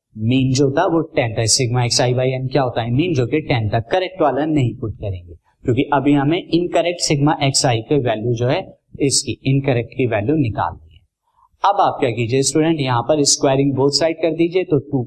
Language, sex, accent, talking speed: Hindi, male, native, 60 wpm